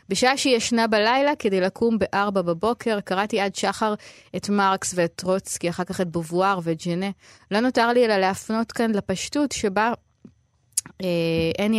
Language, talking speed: Hebrew, 155 wpm